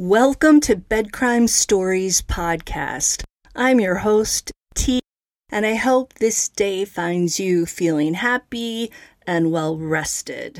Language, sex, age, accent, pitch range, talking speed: English, female, 40-59, American, 180-230 Hz, 120 wpm